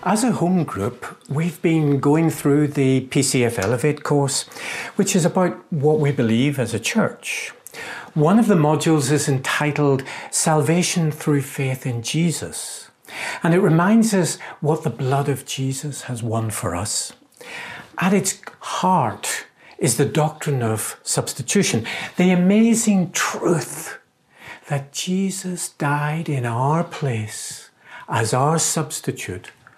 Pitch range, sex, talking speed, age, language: 135-180 Hz, male, 130 wpm, 60-79, English